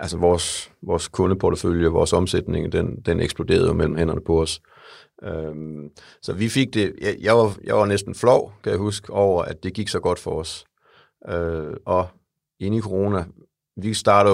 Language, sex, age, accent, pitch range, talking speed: English, male, 50-69, Danish, 80-100 Hz, 180 wpm